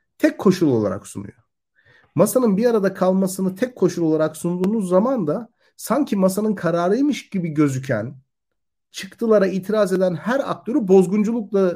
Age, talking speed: 40-59, 130 wpm